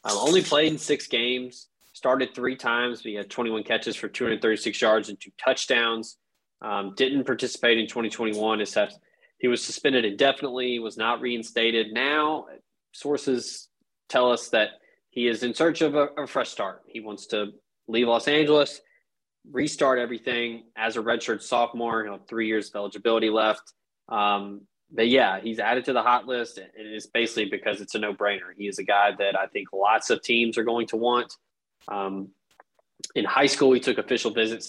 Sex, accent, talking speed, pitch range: male, American, 180 wpm, 105-125 Hz